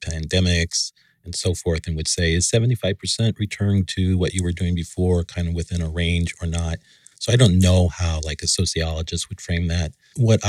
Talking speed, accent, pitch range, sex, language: 200 wpm, American, 85-95 Hz, male, English